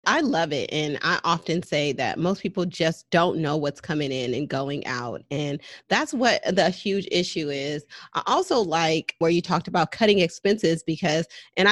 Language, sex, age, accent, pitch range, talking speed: English, female, 30-49, American, 155-185 Hz, 190 wpm